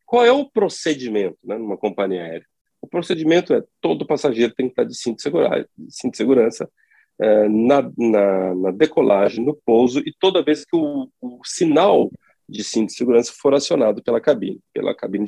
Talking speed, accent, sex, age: 190 wpm, Brazilian, male, 40-59